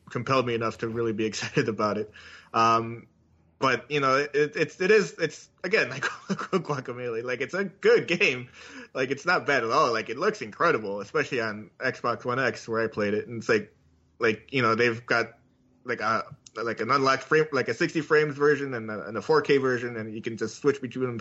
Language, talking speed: English, 220 wpm